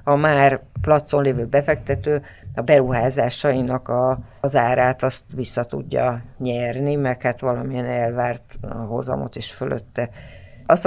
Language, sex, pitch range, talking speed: Hungarian, female, 120-140 Hz, 110 wpm